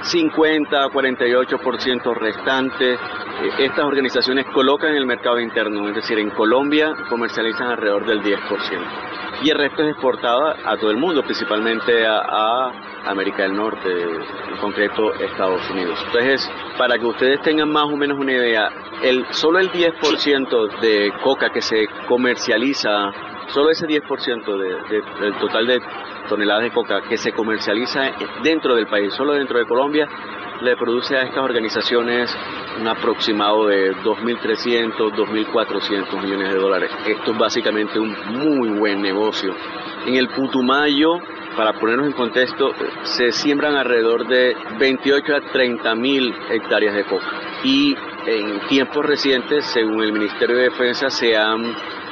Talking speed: 145 wpm